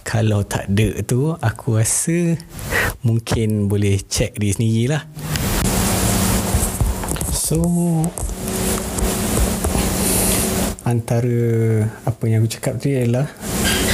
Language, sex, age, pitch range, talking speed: Malay, male, 20-39, 110-125 Hz, 80 wpm